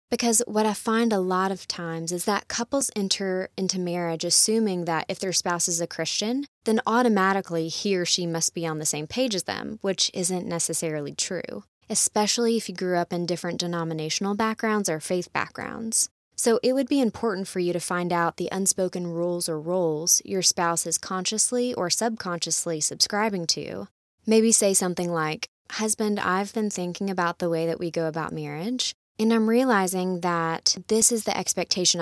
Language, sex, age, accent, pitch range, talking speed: English, female, 20-39, American, 170-215 Hz, 185 wpm